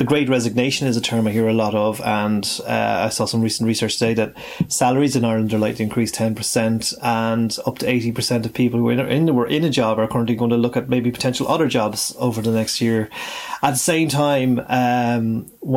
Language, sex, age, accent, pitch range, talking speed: English, male, 30-49, Irish, 110-125 Hz, 225 wpm